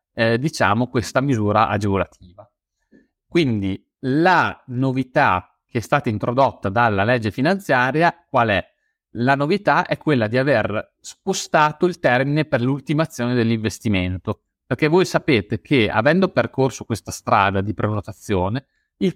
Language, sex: Italian, male